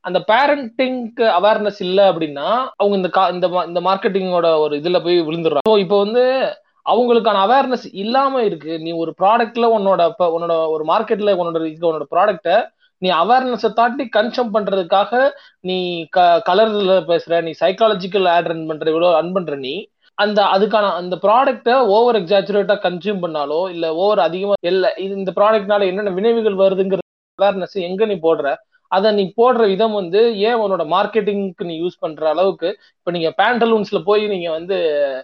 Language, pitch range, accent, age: Tamil, 170-215 Hz, native, 20-39